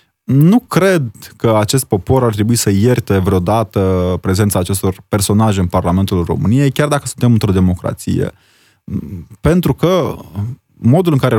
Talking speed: 135 wpm